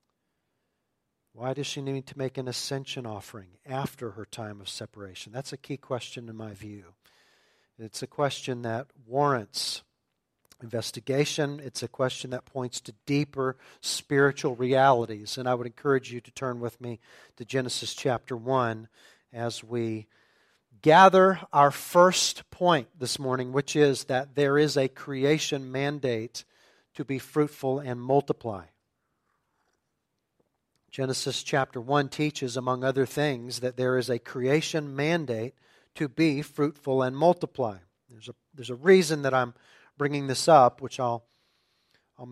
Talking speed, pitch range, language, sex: 145 wpm, 120-150 Hz, English, male